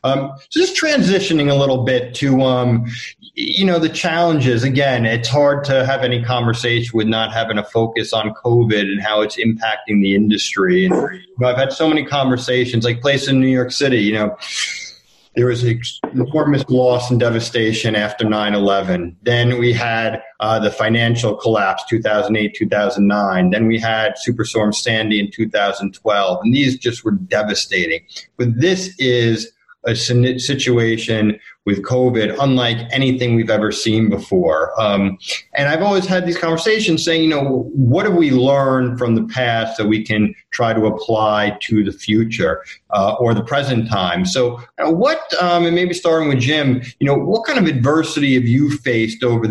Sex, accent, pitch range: male, American, 110-140 Hz